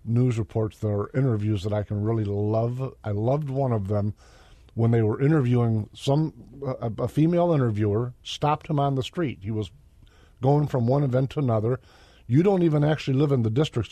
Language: English